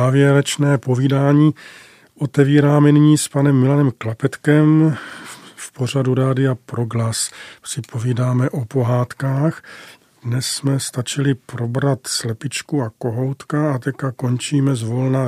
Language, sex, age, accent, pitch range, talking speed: Czech, male, 40-59, native, 130-150 Hz, 105 wpm